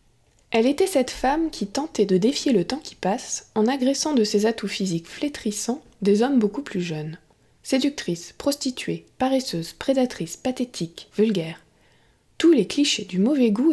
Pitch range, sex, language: 185-255 Hz, female, French